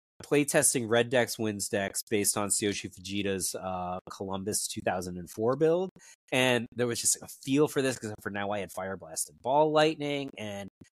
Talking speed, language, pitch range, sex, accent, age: 175 wpm, English, 105-150 Hz, male, American, 30-49